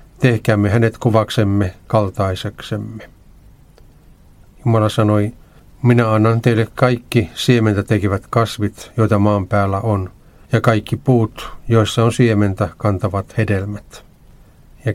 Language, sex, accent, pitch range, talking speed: Finnish, male, native, 100-115 Hz, 105 wpm